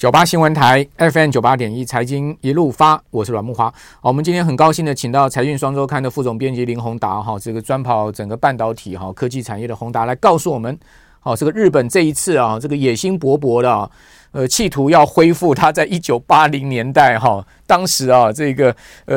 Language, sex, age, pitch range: Chinese, male, 40-59, 115-145 Hz